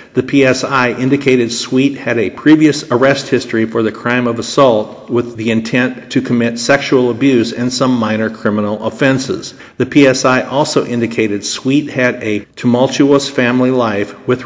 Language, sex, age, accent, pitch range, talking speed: English, male, 50-69, American, 115-135 Hz, 155 wpm